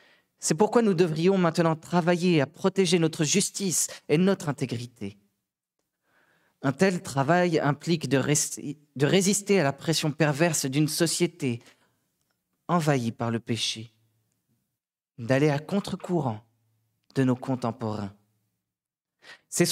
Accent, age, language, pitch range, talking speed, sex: French, 40-59, French, 115-165 Hz, 110 wpm, male